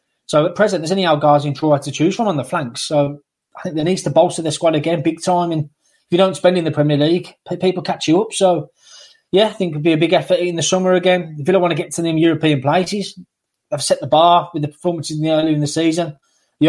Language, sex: English, male